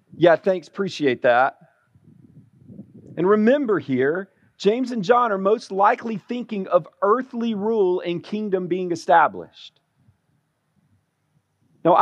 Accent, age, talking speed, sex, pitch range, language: American, 40-59, 110 wpm, male, 135-210 Hz, English